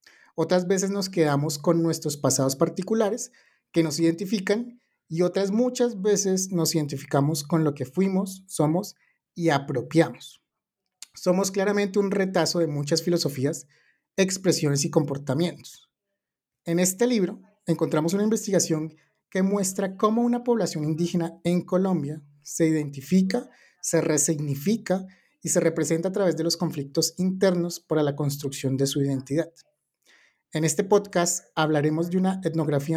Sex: male